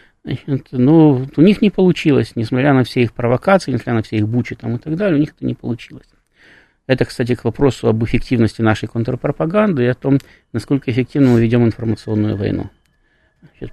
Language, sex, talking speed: Russian, male, 190 wpm